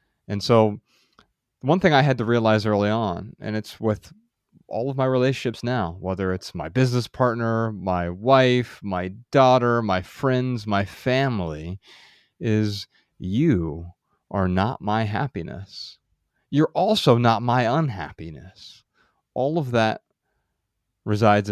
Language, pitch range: English, 95-125 Hz